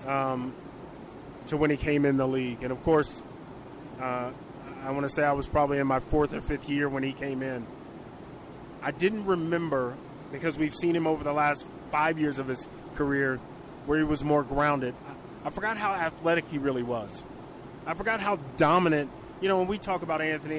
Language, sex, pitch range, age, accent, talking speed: English, male, 145-170 Hz, 30-49, American, 200 wpm